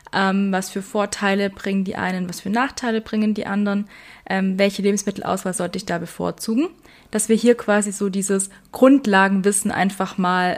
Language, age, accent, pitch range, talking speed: German, 20-39, German, 185-230 Hz, 165 wpm